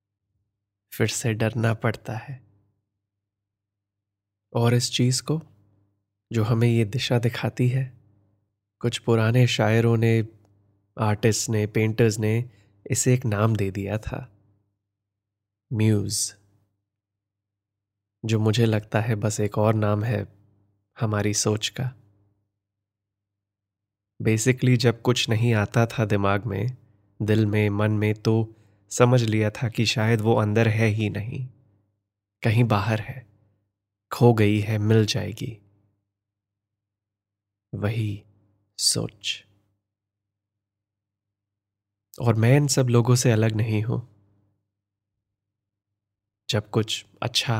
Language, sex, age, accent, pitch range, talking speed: Hindi, male, 20-39, native, 100-115 Hz, 110 wpm